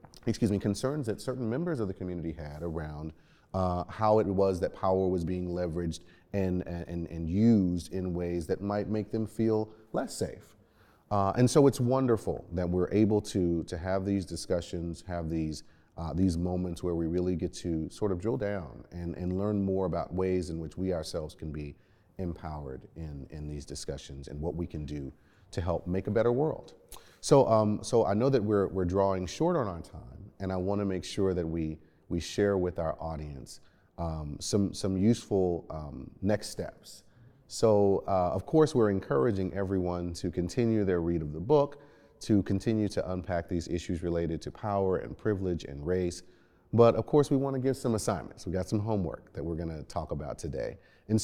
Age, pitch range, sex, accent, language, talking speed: 30-49, 85-110 Hz, male, American, English, 195 wpm